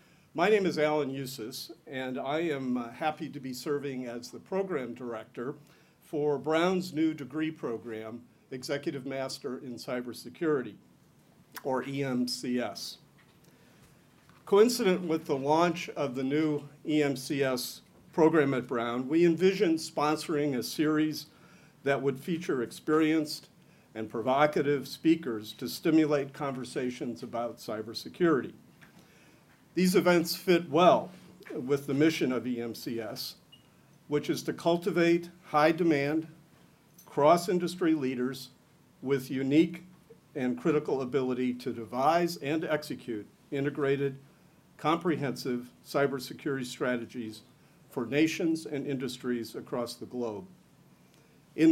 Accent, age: American, 50-69